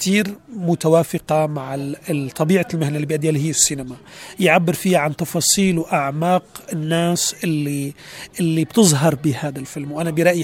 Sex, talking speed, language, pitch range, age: male, 125 wpm, Arabic, 145-180 Hz, 40-59